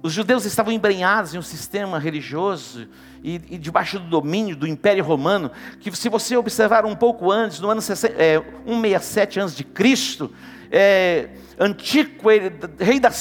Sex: male